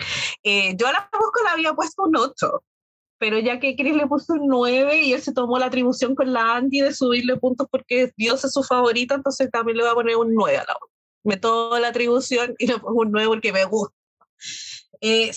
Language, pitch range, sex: Spanish, 240-295 Hz, female